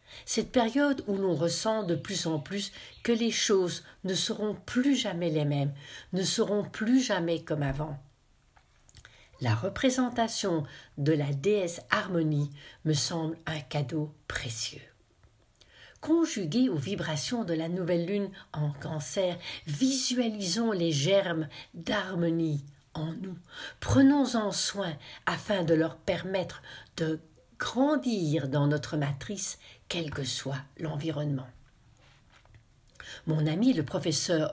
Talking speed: 120 wpm